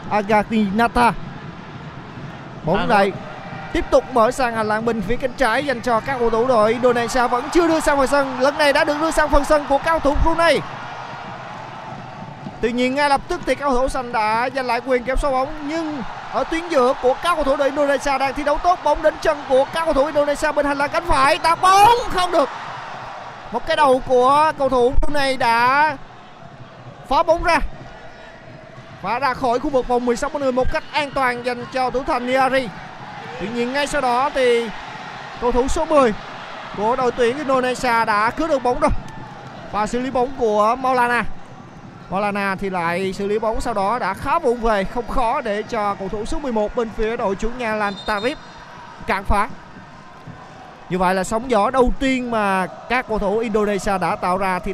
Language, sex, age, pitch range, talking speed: Vietnamese, male, 20-39, 215-285 Hz, 195 wpm